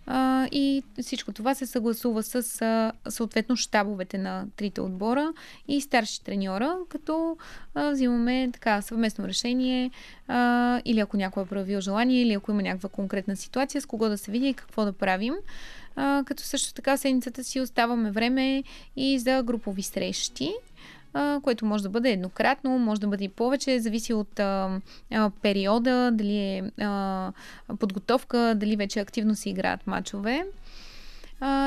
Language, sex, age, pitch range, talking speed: Bulgarian, female, 20-39, 205-260 Hz, 155 wpm